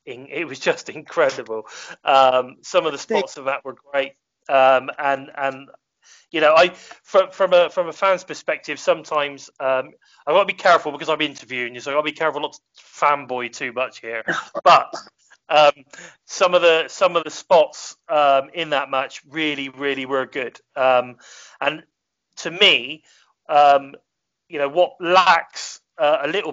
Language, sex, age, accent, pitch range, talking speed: English, male, 30-49, British, 135-160 Hz, 170 wpm